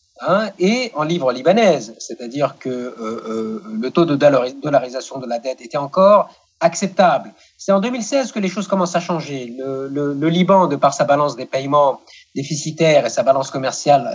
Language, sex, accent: French, male, French